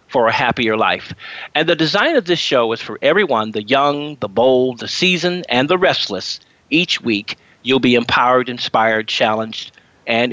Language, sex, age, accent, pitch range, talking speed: English, male, 50-69, American, 120-180 Hz, 175 wpm